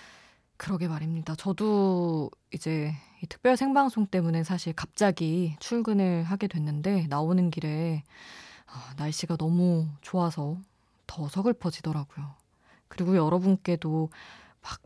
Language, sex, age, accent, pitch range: Korean, female, 20-39, native, 155-190 Hz